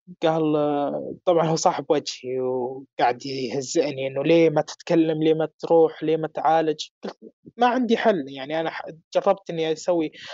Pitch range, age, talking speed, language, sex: 140-190 Hz, 20-39, 145 wpm, Arabic, male